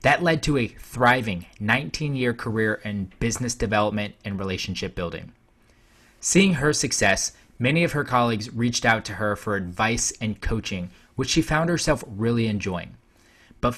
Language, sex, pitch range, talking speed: English, male, 105-125 Hz, 155 wpm